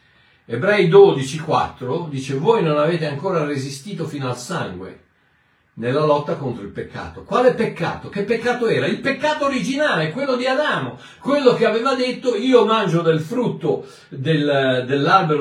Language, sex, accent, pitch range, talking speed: Italian, male, native, 145-215 Hz, 140 wpm